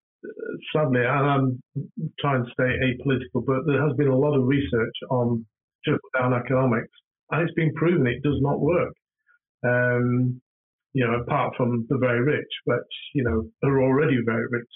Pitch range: 120-145 Hz